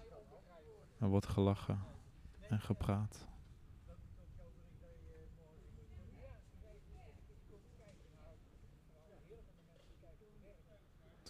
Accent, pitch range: Dutch, 90-110 Hz